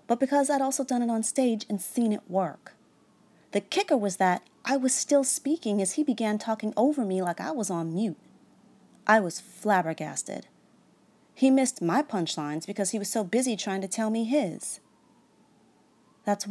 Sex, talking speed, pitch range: female, 180 wpm, 180-235 Hz